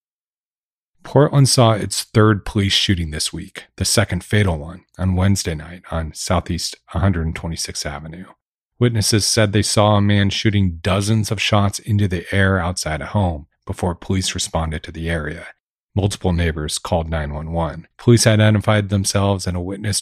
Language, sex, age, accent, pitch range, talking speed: English, male, 40-59, American, 85-105 Hz, 155 wpm